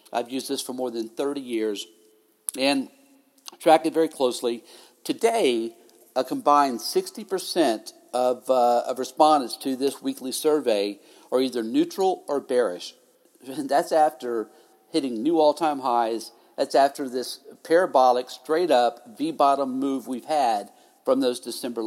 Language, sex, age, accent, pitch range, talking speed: English, male, 50-69, American, 125-165 Hz, 130 wpm